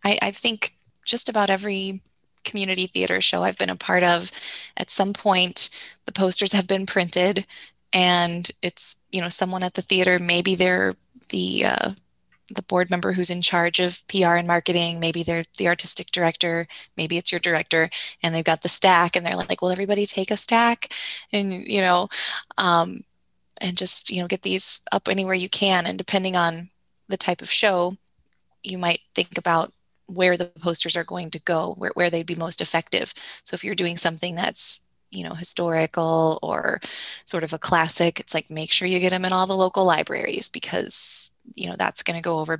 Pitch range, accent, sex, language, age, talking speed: 165-190 Hz, American, female, English, 20-39, 195 wpm